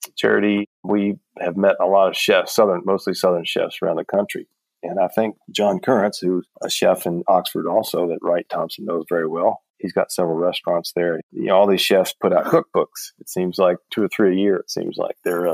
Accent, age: American, 40-59